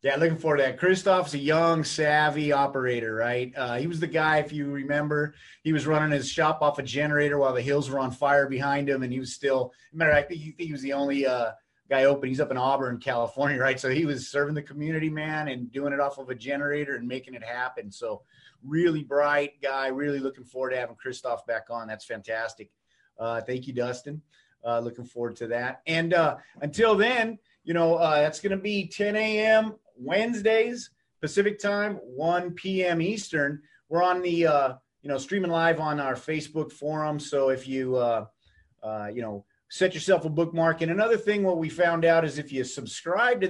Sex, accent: male, American